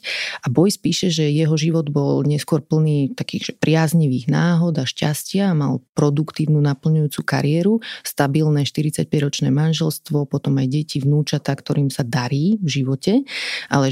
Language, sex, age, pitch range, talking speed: Slovak, female, 30-49, 140-165 Hz, 135 wpm